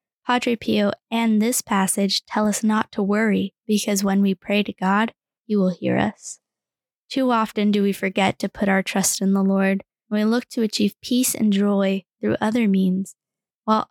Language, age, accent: English, 10-29, American